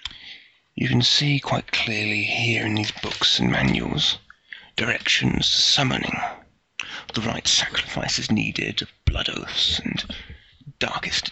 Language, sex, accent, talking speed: English, male, British, 115 wpm